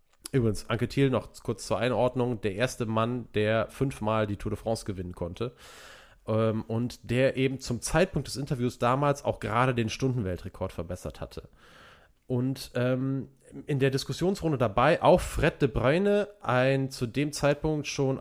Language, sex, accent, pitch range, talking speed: German, male, German, 105-135 Hz, 160 wpm